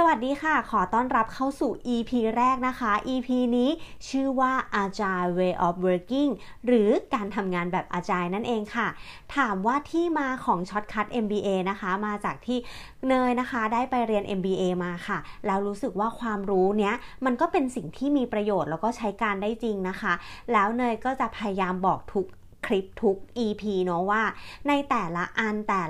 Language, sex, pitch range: Thai, female, 195-245 Hz